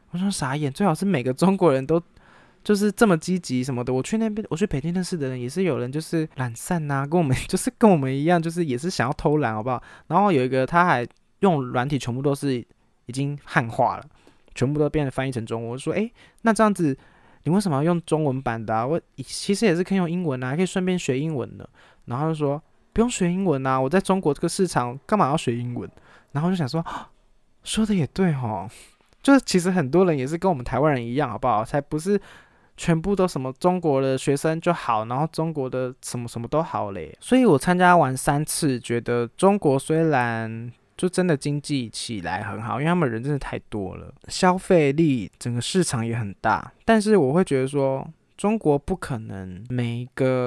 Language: Chinese